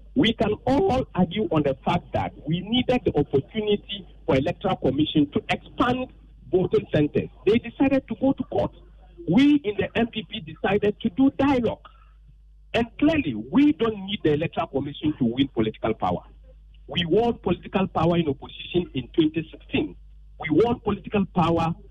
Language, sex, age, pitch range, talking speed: English, male, 50-69, 140-225 Hz, 155 wpm